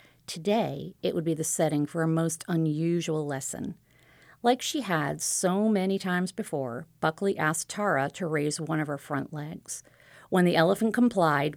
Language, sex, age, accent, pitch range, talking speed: English, female, 40-59, American, 145-185 Hz, 165 wpm